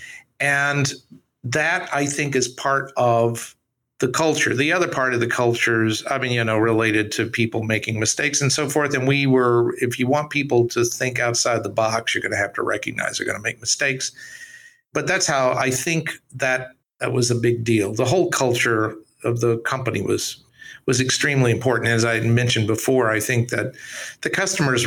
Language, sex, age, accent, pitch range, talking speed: English, male, 50-69, American, 115-135 Hz, 195 wpm